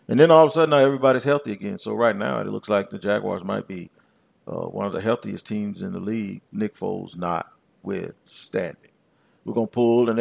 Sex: male